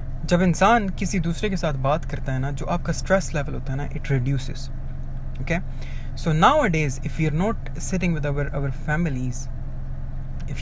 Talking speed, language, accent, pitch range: 185 wpm, Hindi, native, 140-190 Hz